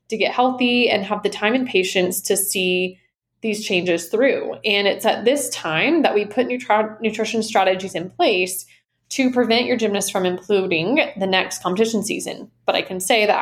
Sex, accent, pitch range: female, American, 190-245 Hz